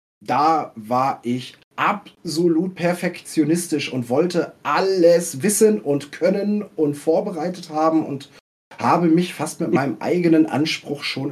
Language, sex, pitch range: German, male, 150-190 Hz